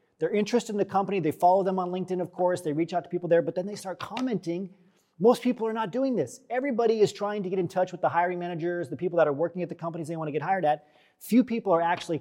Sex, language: male, English